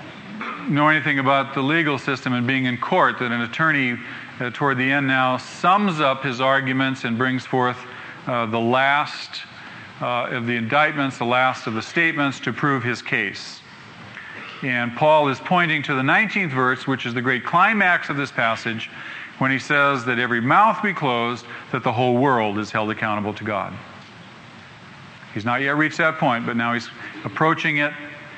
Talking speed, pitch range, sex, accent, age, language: 180 wpm, 120-145 Hz, male, American, 40-59, English